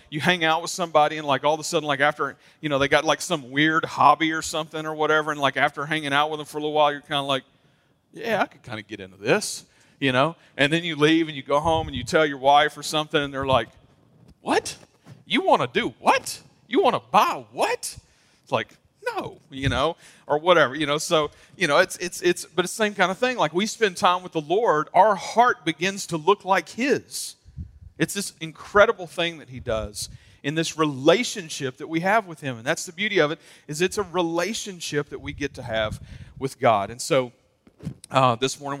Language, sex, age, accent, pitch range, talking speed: English, male, 40-59, American, 135-170 Hz, 235 wpm